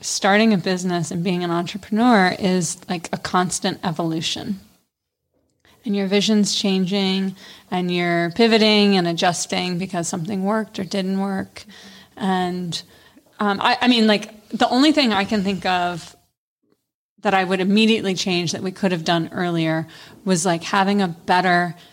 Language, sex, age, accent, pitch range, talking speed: English, female, 30-49, American, 175-210 Hz, 155 wpm